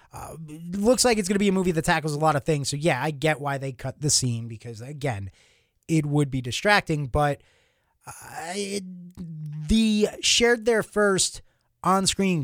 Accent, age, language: American, 30-49, English